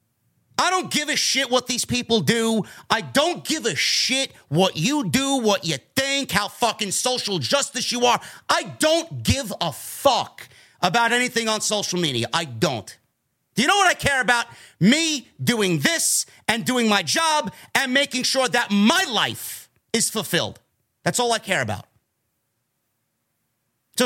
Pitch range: 160-255 Hz